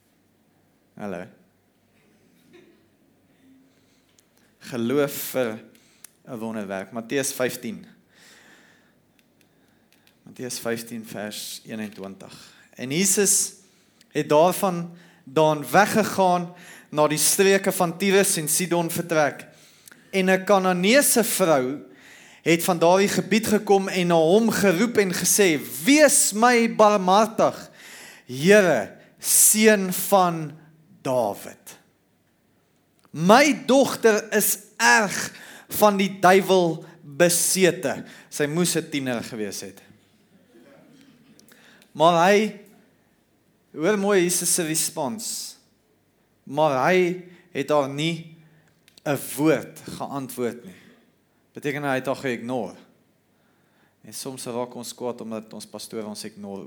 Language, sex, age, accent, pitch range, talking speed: English, male, 30-49, Swiss, 130-200 Hz, 95 wpm